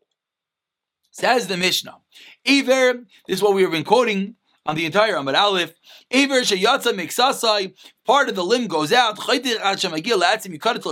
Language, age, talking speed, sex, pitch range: English, 30-49, 185 wpm, male, 195-260 Hz